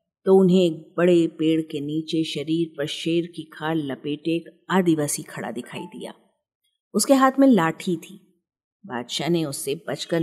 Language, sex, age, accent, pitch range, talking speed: Hindi, female, 50-69, native, 150-190 Hz, 160 wpm